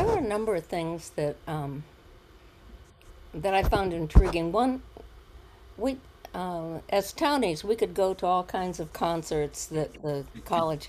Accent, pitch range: American, 150-195 Hz